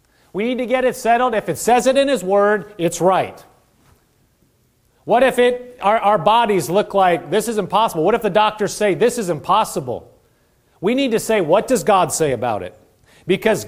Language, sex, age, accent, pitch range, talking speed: English, male, 30-49, American, 165-220 Hz, 200 wpm